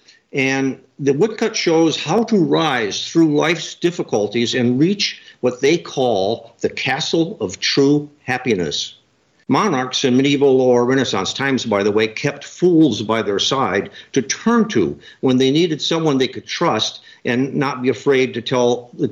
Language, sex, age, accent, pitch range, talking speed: English, male, 60-79, American, 120-150 Hz, 160 wpm